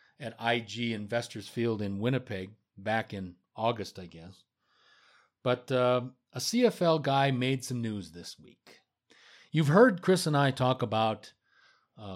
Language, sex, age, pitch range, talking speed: English, male, 40-59, 110-130 Hz, 145 wpm